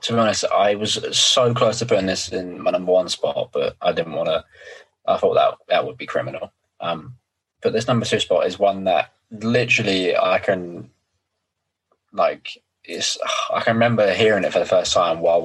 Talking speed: 200 wpm